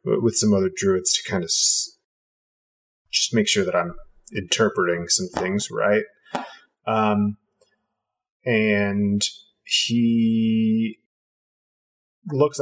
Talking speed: 100 wpm